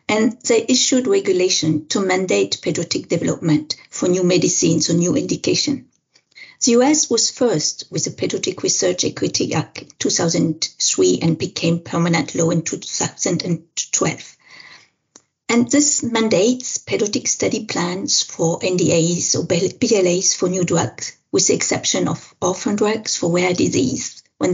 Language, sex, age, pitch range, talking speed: English, female, 50-69, 180-245 Hz, 130 wpm